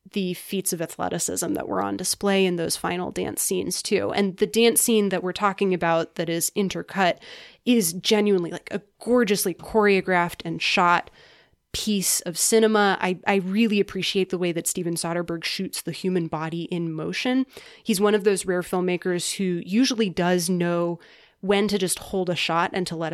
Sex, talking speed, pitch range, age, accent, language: female, 180 wpm, 175-205 Hz, 20-39, American, English